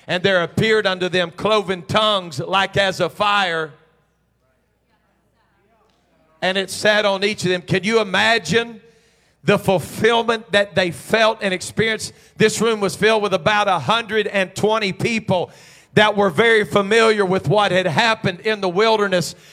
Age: 50-69